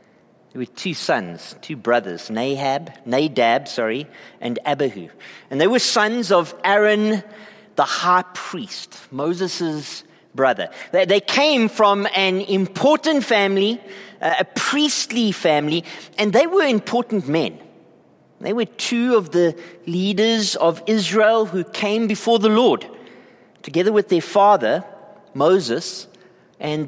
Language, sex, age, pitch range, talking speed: English, male, 40-59, 160-220 Hz, 125 wpm